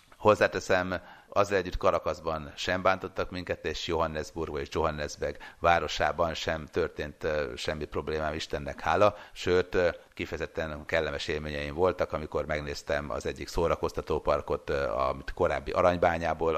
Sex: male